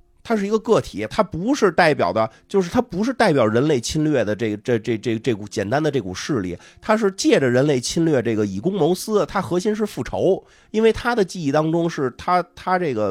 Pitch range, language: 115-180 Hz, Chinese